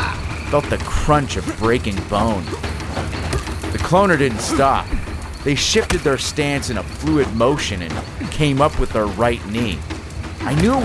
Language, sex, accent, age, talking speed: English, male, American, 30-49, 155 wpm